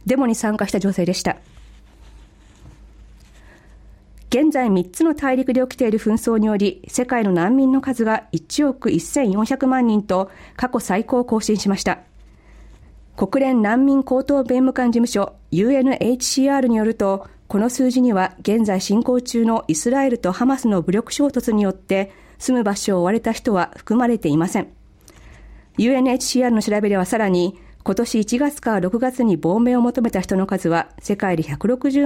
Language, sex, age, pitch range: Japanese, female, 40-59, 195-255 Hz